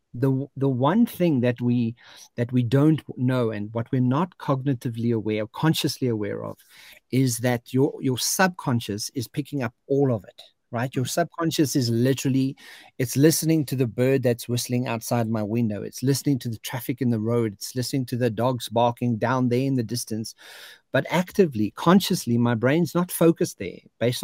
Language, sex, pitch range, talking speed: English, male, 120-150 Hz, 185 wpm